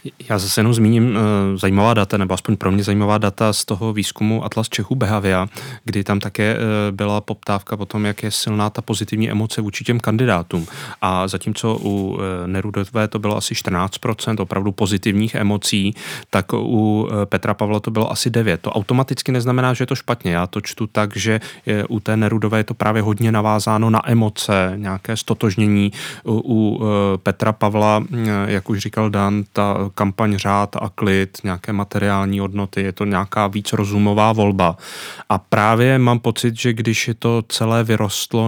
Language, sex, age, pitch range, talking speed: Czech, male, 30-49, 105-120 Hz, 170 wpm